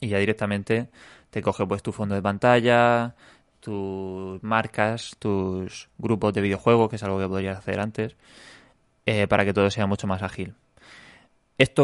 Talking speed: 160 wpm